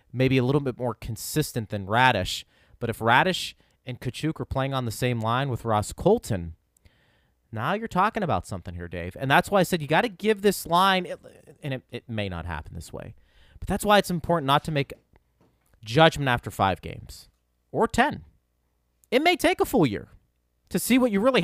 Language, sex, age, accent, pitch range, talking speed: English, male, 30-49, American, 115-195 Hz, 205 wpm